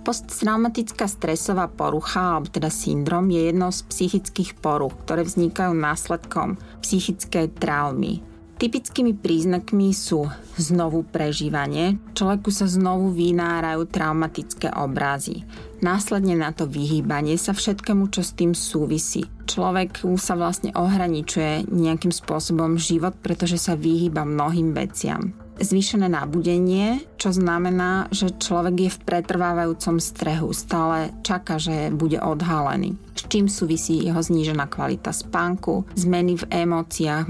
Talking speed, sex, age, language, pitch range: 120 wpm, female, 30-49, Slovak, 160-190 Hz